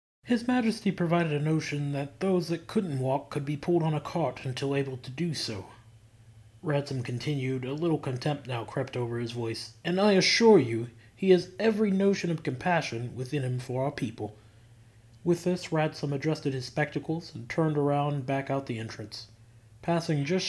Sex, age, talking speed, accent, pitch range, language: male, 30-49, 180 wpm, American, 120-160 Hz, English